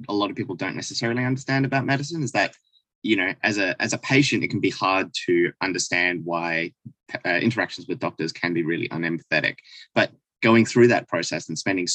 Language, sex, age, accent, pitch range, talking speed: English, male, 20-39, Australian, 95-125 Hz, 200 wpm